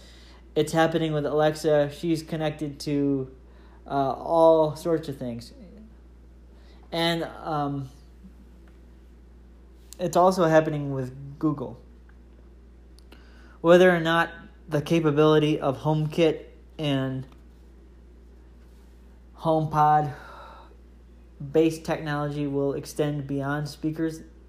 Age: 20-39